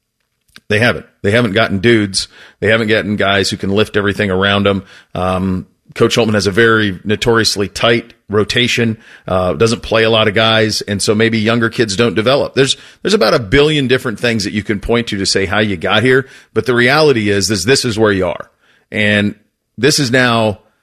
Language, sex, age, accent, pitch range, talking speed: English, male, 40-59, American, 100-125 Hz, 205 wpm